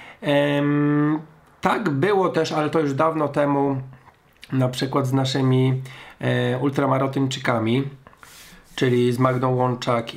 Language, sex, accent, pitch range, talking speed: Polish, male, native, 120-150 Hz, 110 wpm